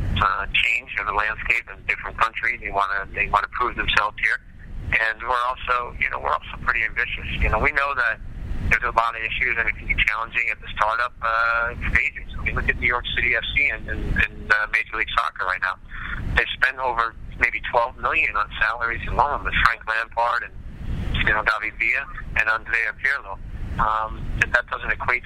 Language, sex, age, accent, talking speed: English, male, 50-69, American, 210 wpm